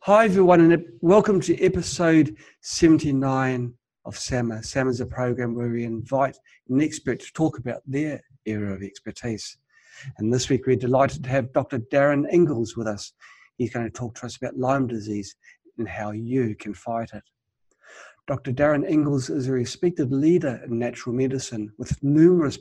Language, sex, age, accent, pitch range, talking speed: English, male, 50-69, British, 120-150 Hz, 170 wpm